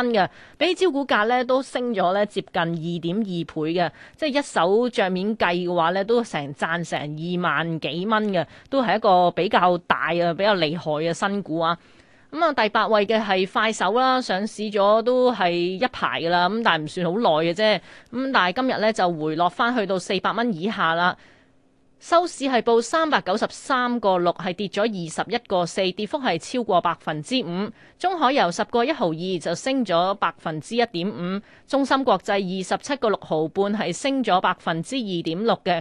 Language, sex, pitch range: Chinese, female, 175-235 Hz